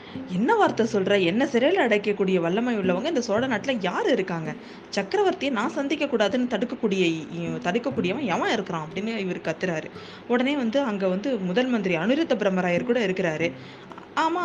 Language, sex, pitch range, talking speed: Tamil, female, 175-240 Hz, 145 wpm